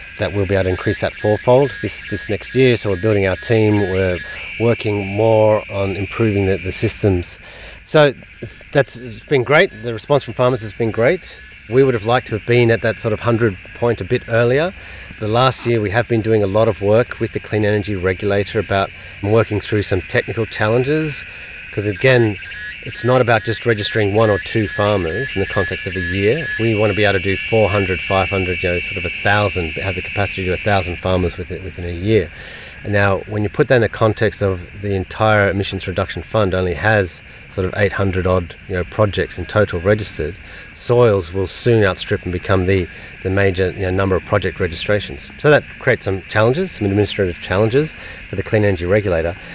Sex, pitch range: male, 95-110 Hz